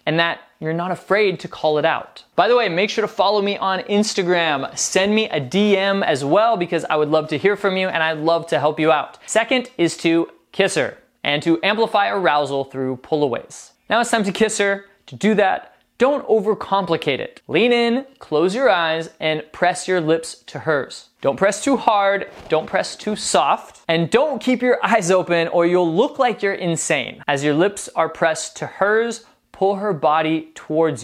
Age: 20-39